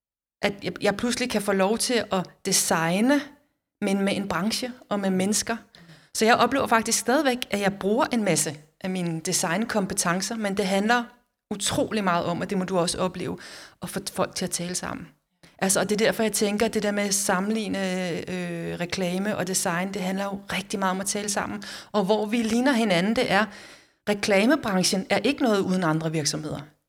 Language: Danish